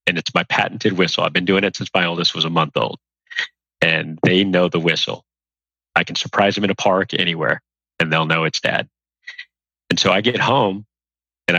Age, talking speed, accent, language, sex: 30-49, 205 wpm, American, English, male